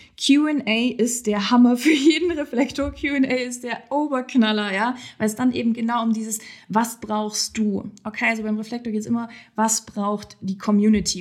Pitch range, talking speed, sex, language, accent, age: 210-255 Hz, 175 wpm, female, German, German, 20-39